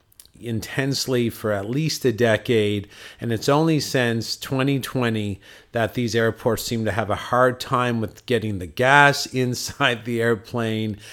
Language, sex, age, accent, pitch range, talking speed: English, male, 40-59, American, 110-130 Hz, 145 wpm